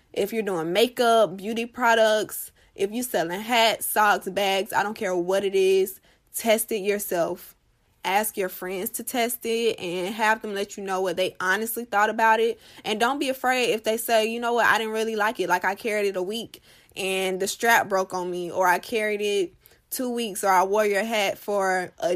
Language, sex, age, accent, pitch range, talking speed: English, female, 20-39, American, 190-225 Hz, 215 wpm